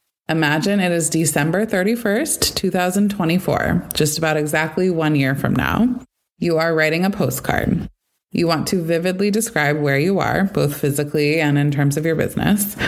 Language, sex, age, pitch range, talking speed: English, female, 20-39, 145-185 Hz, 160 wpm